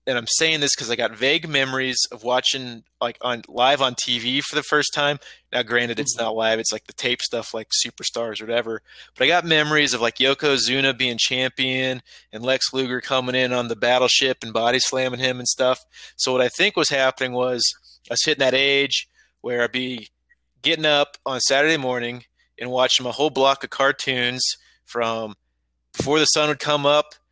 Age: 20-39